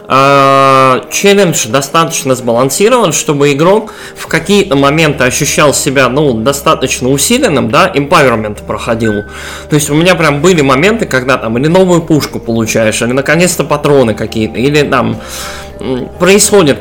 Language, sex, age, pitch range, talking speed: Russian, male, 20-39, 130-175 Hz, 130 wpm